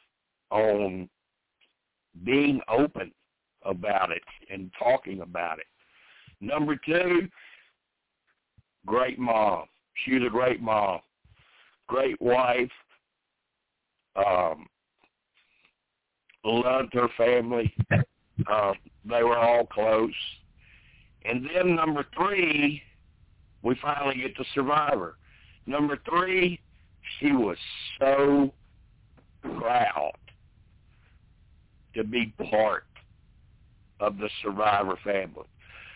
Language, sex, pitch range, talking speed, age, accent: English, male, 100-125 Hz, 85 wpm, 60-79, American